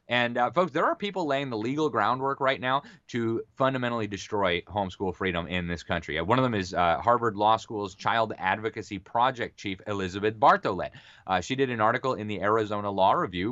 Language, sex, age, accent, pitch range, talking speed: English, male, 30-49, American, 100-130 Hz, 200 wpm